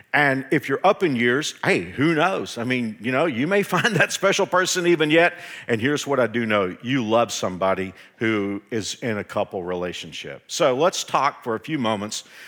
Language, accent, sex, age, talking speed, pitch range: English, American, male, 50-69, 205 wpm, 115-160 Hz